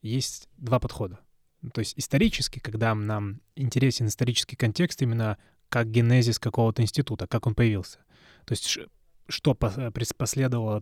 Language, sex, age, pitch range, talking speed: Russian, male, 20-39, 110-130 Hz, 130 wpm